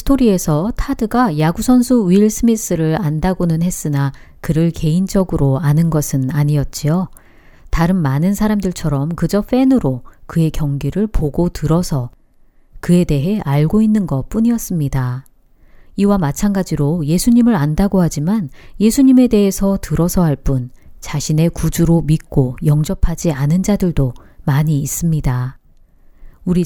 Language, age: Korean, 40-59